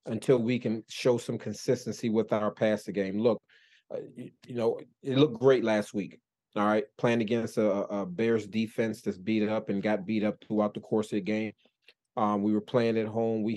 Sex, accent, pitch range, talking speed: male, American, 105-120 Hz, 215 wpm